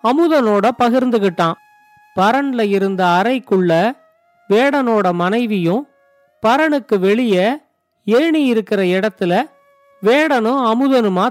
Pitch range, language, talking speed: 200-275 Hz, Tamil, 75 wpm